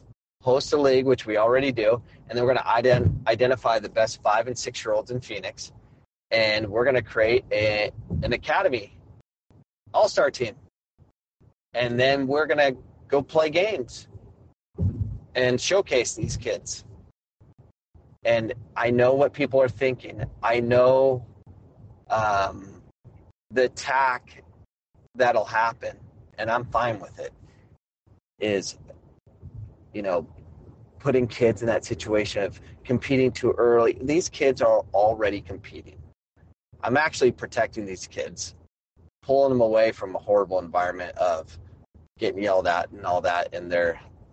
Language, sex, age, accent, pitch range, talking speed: English, male, 30-49, American, 100-135 Hz, 135 wpm